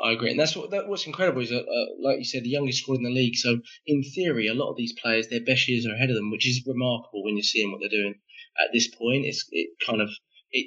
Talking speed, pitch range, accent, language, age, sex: 290 wpm, 110-135 Hz, British, English, 20-39, male